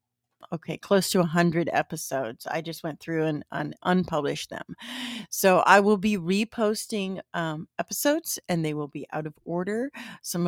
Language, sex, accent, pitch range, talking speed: English, female, American, 155-185 Hz, 165 wpm